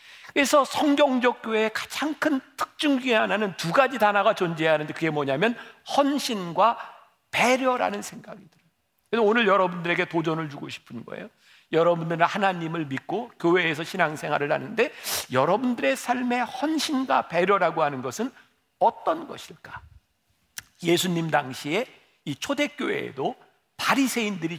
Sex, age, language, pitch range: male, 50-69, Korean, 170-250 Hz